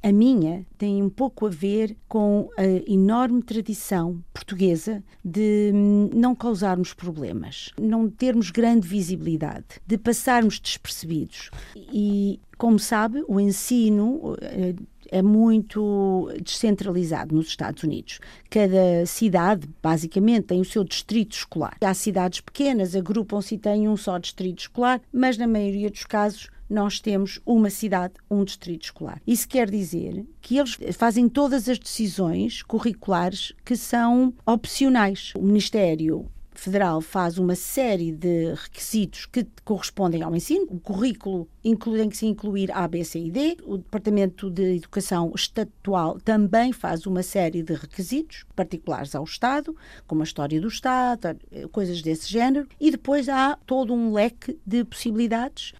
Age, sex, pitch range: 50-69, female, 185-235 Hz